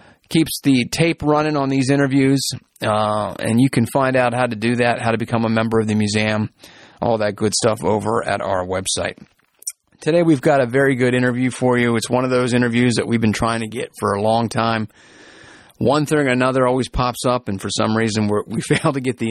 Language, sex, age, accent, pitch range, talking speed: English, male, 30-49, American, 110-135 Hz, 225 wpm